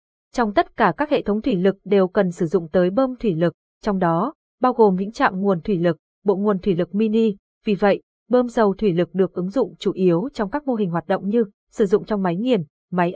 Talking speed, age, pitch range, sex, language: 245 wpm, 20-39, 180-235 Hz, female, Vietnamese